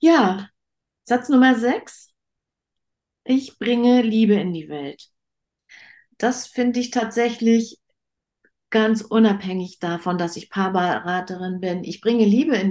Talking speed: 120 wpm